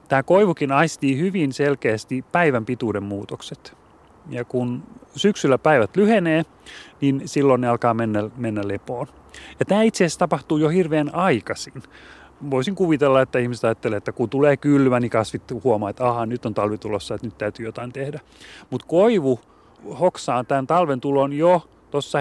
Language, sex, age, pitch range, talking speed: Finnish, male, 30-49, 120-150 Hz, 150 wpm